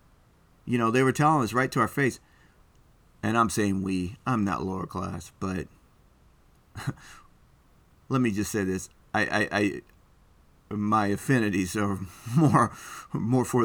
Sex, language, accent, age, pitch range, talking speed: male, English, American, 30-49, 95-130 Hz, 145 wpm